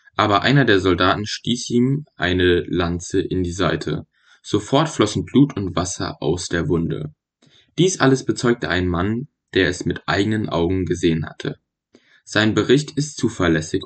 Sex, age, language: male, 10-29, German